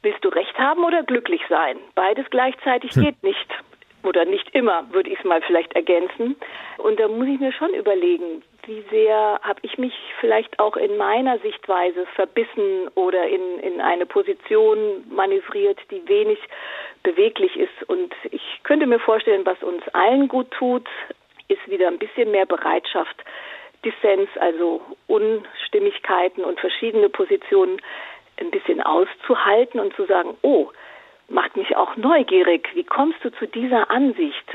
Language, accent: German, German